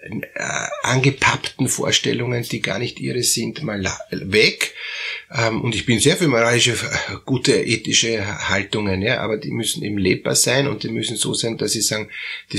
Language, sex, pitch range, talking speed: German, male, 105-135 Hz, 160 wpm